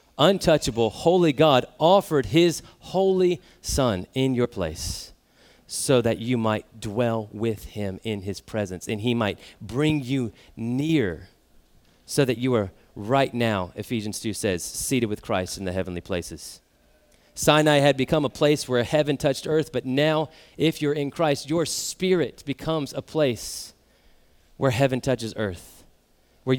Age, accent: 30-49, American